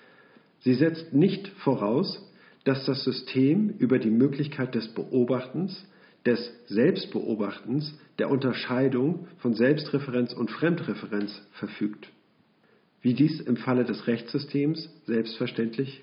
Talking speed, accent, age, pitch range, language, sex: 105 wpm, German, 50-69, 120-150 Hz, German, male